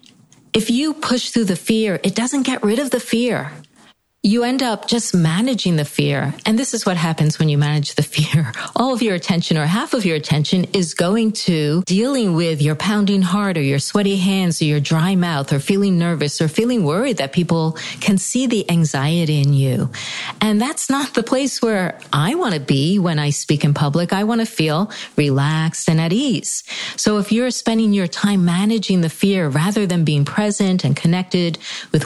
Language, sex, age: English, female, 40-59